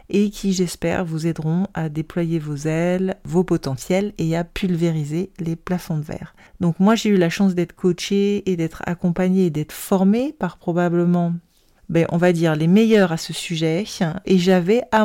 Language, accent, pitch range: French, French, 165-195 Hz